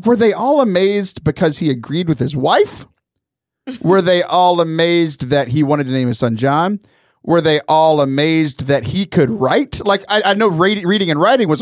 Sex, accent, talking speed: male, American, 200 wpm